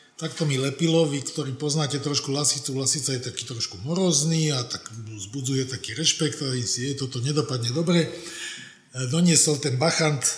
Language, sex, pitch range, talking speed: Slovak, male, 135-165 Hz, 155 wpm